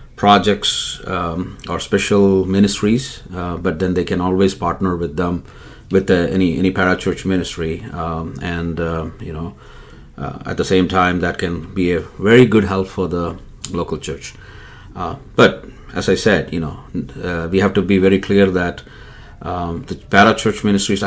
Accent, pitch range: Indian, 85-95 Hz